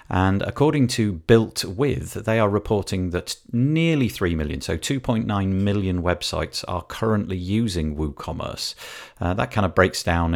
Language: English